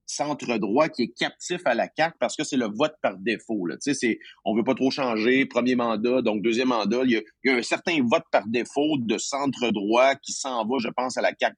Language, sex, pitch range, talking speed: French, male, 120-155 Hz, 265 wpm